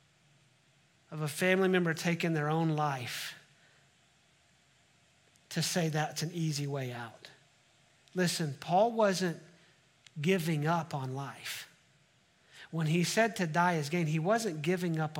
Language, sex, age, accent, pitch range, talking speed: English, male, 40-59, American, 160-220 Hz, 130 wpm